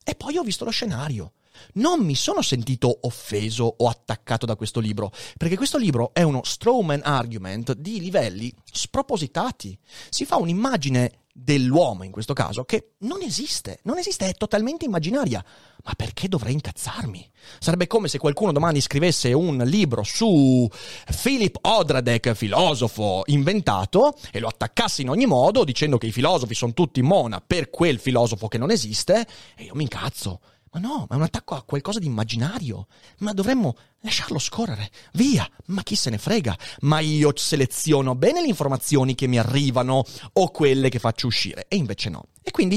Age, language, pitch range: 30-49, Italian, 120-185 Hz